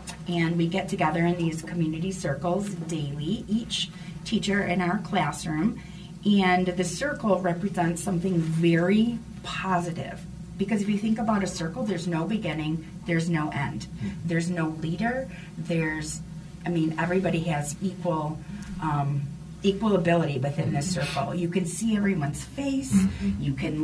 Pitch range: 165-205 Hz